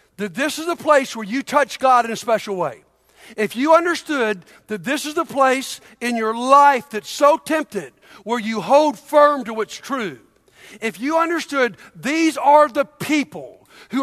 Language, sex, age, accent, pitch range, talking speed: English, male, 60-79, American, 210-285 Hz, 180 wpm